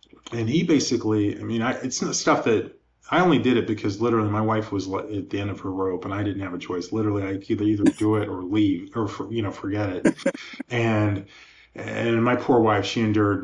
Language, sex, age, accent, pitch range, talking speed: English, male, 20-39, American, 100-110 Hz, 230 wpm